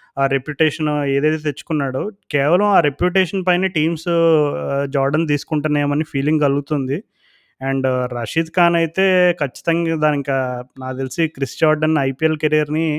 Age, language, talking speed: 20-39, Telugu, 115 wpm